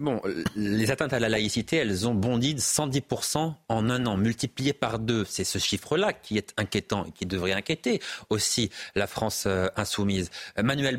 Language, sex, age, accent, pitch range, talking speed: French, male, 40-59, French, 105-145 Hz, 175 wpm